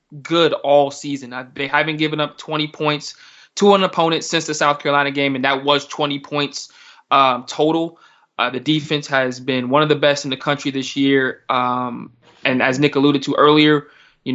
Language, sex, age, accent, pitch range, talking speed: English, male, 20-39, American, 135-155 Hz, 195 wpm